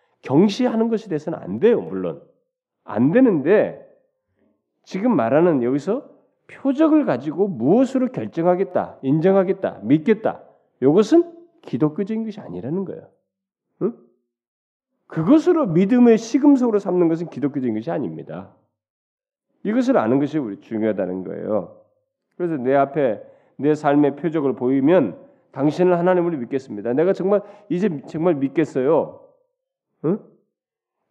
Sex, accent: male, native